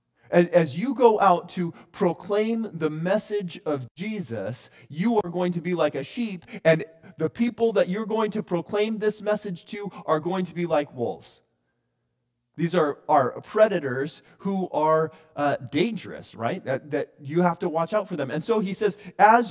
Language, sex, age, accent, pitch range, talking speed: English, male, 40-59, American, 155-200 Hz, 180 wpm